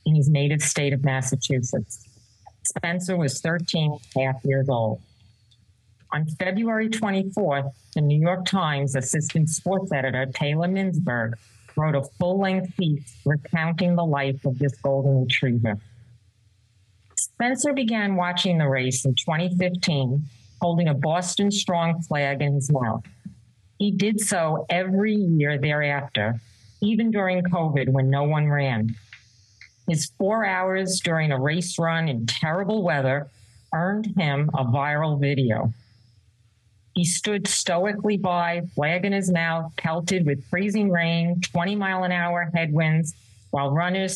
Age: 40-59